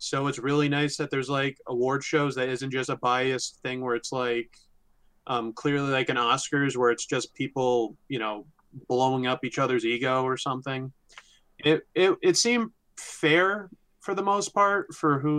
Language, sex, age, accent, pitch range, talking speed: English, male, 20-39, American, 130-160 Hz, 185 wpm